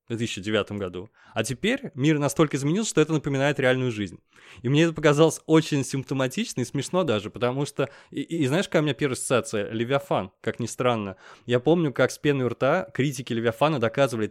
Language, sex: Russian, male